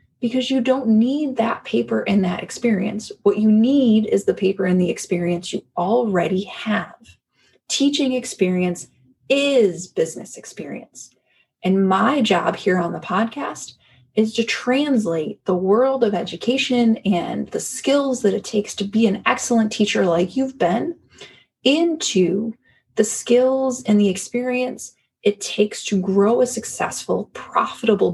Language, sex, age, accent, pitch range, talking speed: English, female, 20-39, American, 180-245 Hz, 145 wpm